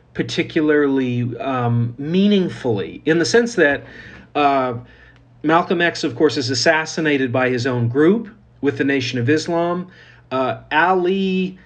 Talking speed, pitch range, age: 130 wpm, 130-170 Hz, 40-59